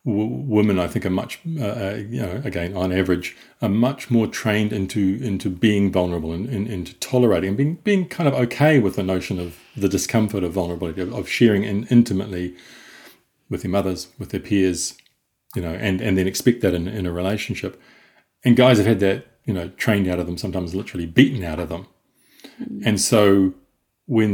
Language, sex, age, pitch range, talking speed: English, male, 40-59, 90-115 Hz, 195 wpm